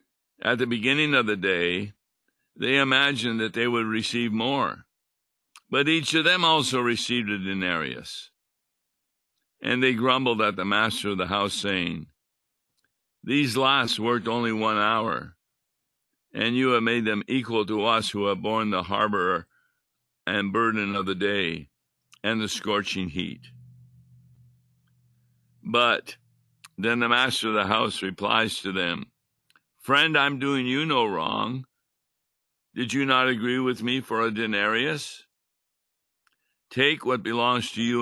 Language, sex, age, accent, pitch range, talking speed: English, male, 60-79, American, 105-125 Hz, 140 wpm